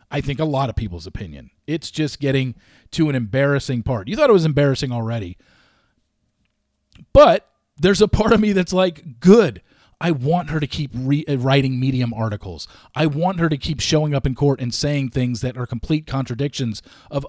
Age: 40-59